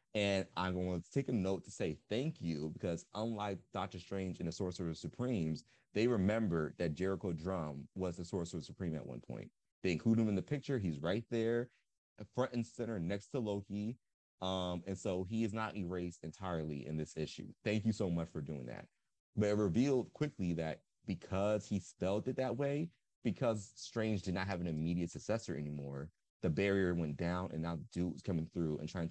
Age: 30-49